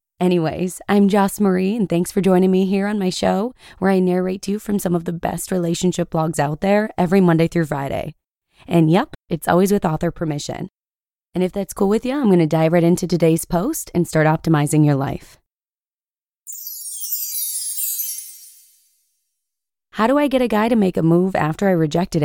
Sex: female